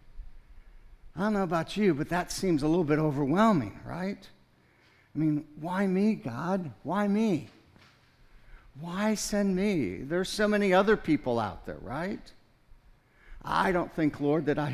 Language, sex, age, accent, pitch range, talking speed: English, male, 60-79, American, 115-155 Hz, 150 wpm